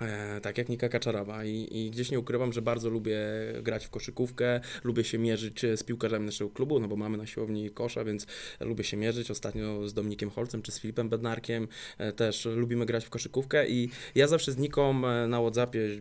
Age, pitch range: 20-39, 105-120 Hz